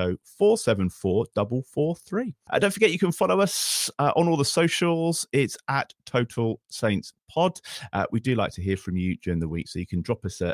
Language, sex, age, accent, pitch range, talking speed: English, male, 40-59, British, 90-140 Hz, 200 wpm